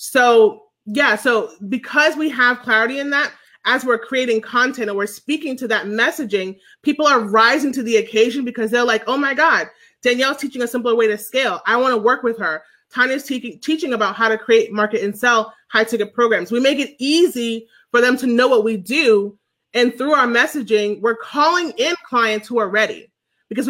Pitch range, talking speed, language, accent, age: 220-275 Hz, 200 wpm, English, American, 30-49